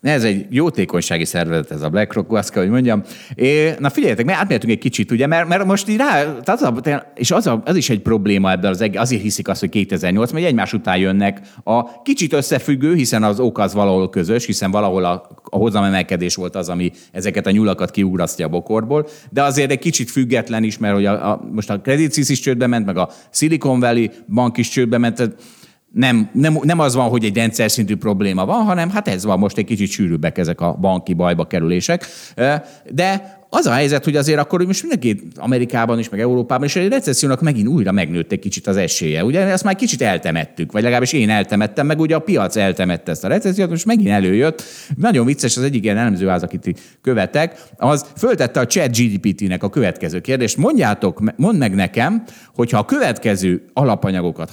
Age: 30-49